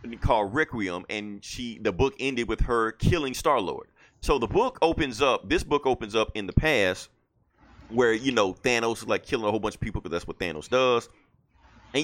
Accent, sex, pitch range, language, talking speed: American, male, 105-145 Hz, English, 210 wpm